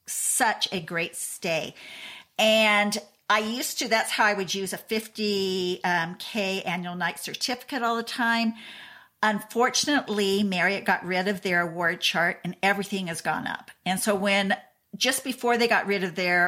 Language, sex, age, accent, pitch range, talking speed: English, female, 50-69, American, 180-230 Hz, 165 wpm